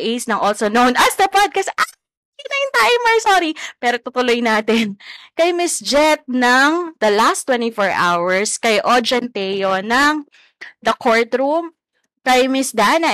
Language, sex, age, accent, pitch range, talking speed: Filipino, female, 20-39, native, 190-250 Hz, 135 wpm